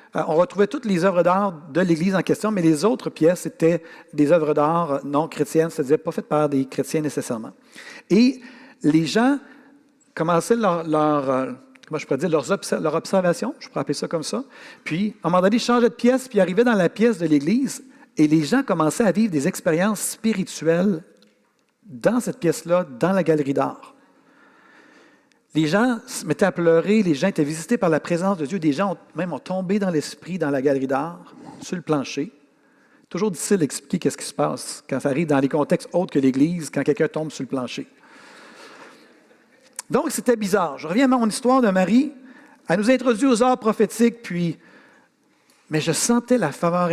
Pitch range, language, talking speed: 155-240 Hz, French, 190 wpm